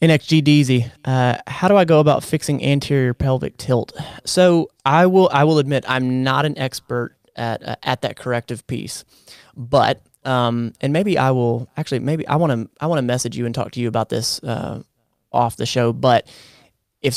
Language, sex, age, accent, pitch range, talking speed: English, male, 20-39, American, 120-135 Hz, 190 wpm